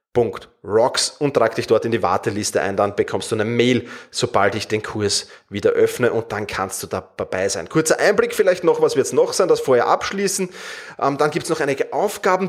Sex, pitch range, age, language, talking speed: male, 140-200 Hz, 20-39, German, 215 wpm